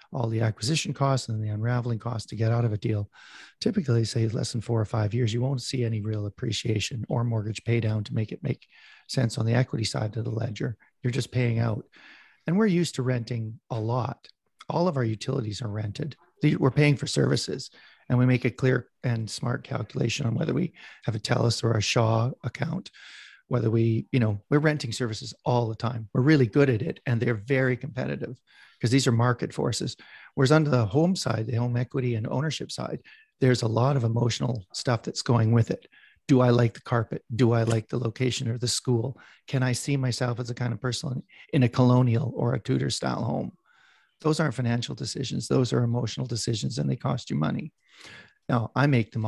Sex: male